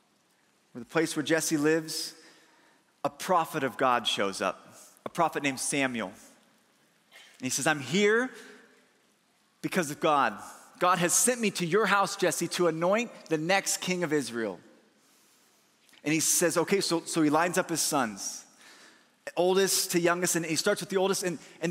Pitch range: 145-190 Hz